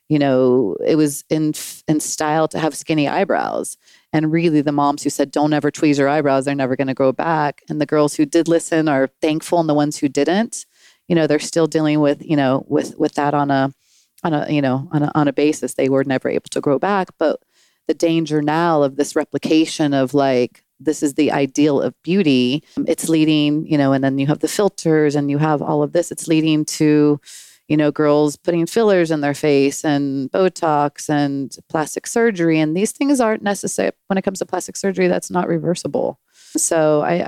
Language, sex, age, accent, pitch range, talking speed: English, female, 30-49, American, 145-165 Hz, 215 wpm